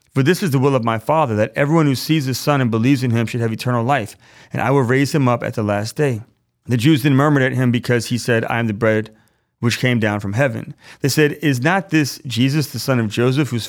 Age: 30-49